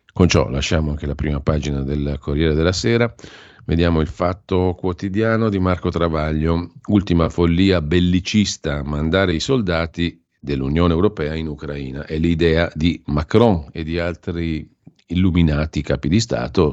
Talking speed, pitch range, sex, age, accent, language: 145 wpm, 75-90 Hz, male, 50-69, native, Italian